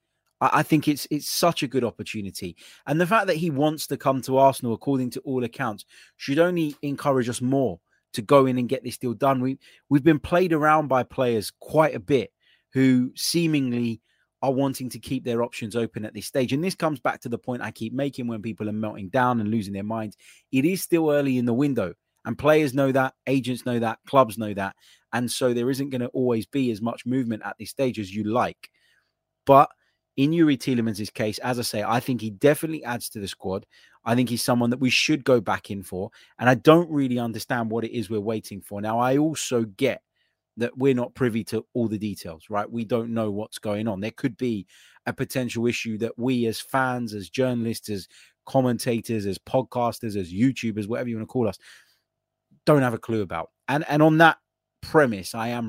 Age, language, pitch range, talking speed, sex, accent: 20-39, English, 110-135 Hz, 220 wpm, male, British